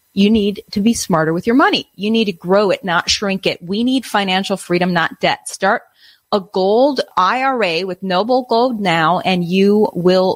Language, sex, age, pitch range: English, female, 30-49, 180-225 Hz